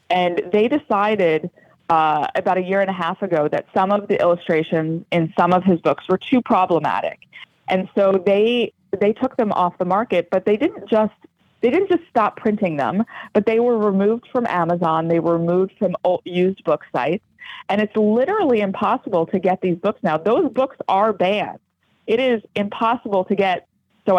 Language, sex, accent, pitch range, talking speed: English, female, American, 170-210 Hz, 190 wpm